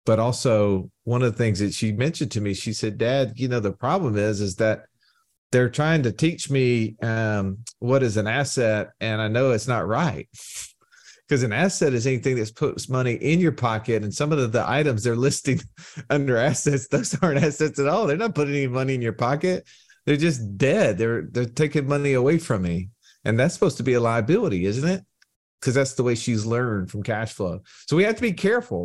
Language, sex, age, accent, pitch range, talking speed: English, male, 40-59, American, 110-140 Hz, 220 wpm